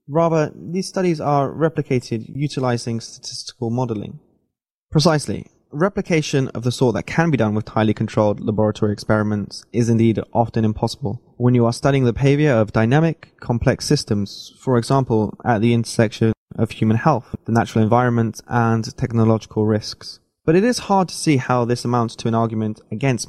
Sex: male